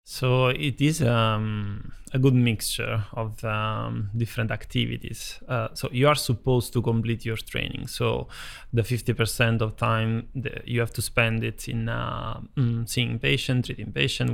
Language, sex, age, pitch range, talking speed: English, male, 20-39, 115-125 Hz, 155 wpm